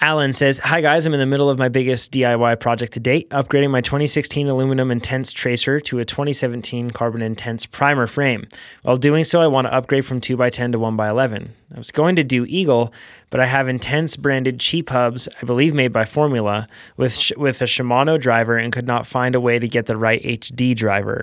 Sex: male